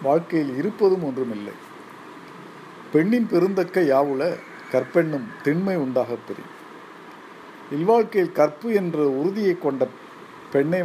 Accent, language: native, Tamil